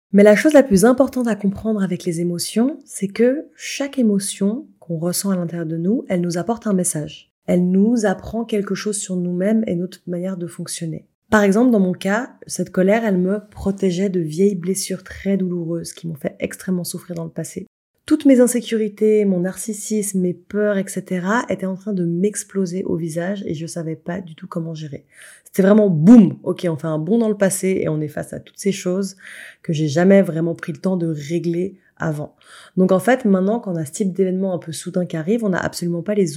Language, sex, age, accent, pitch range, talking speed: French, female, 20-39, French, 170-205 Hz, 220 wpm